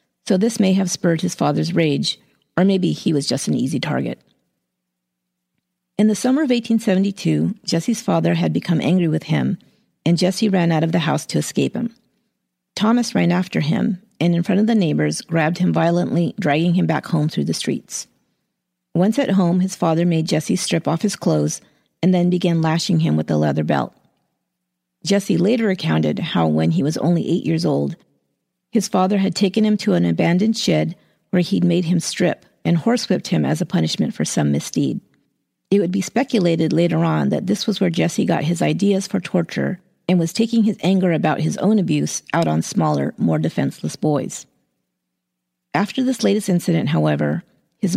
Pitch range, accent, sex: 145-200 Hz, American, female